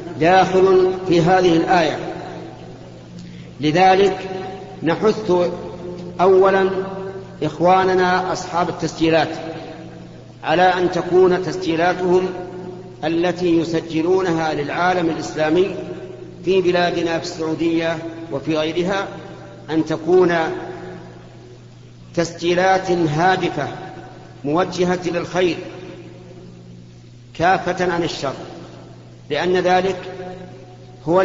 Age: 50-69